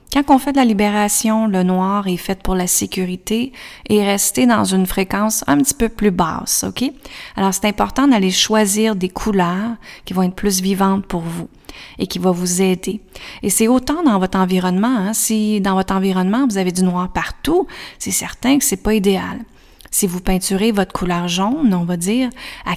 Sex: female